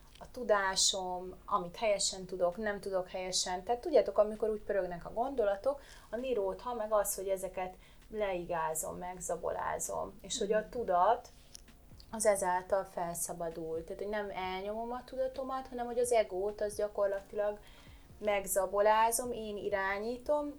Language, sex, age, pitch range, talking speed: Hungarian, female, 30-49, 185-225 Hz, 130 wpm